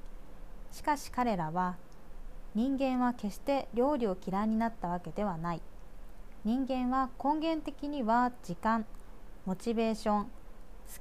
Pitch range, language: 190-265 Hz, Japanese